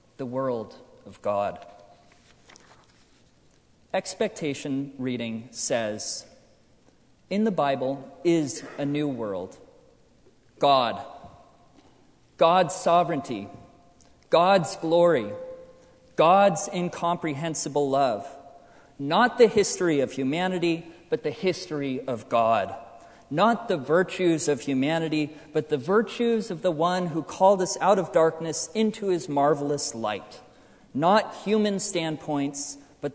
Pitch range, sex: 130-180 Hz, male